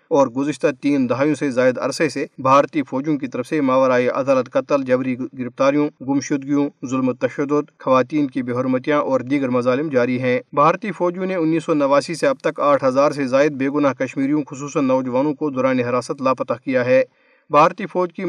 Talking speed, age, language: 175 wpm, 40-59, Urdu